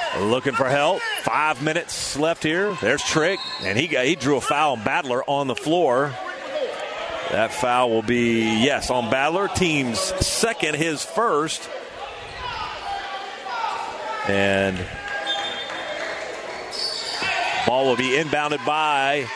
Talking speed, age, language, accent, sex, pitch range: 120 wpm, 40-59, English, American, male, 135-190 Hz